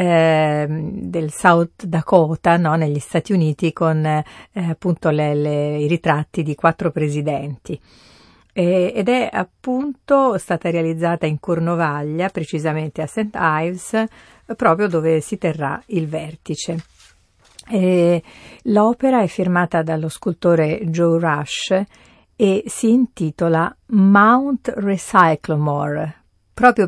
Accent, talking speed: native, 100 wpm